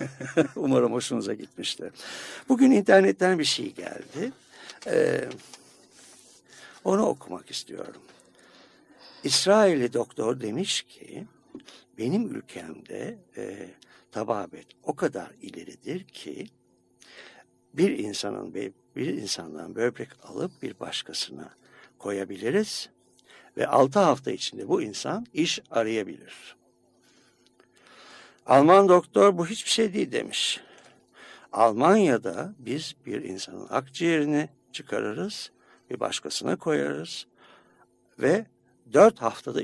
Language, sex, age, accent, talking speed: Turkish, male, 60-79, native, 90 wpm